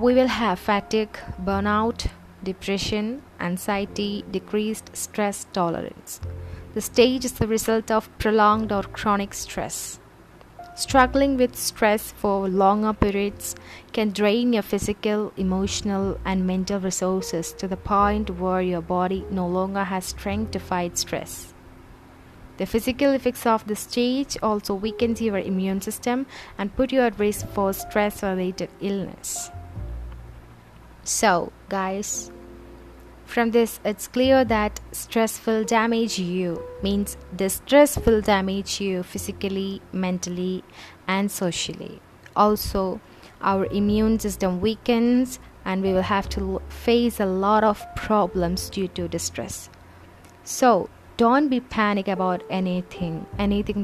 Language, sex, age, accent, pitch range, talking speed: Malayalam, female, 20-39, native, 180-215 Hz, 125 wpm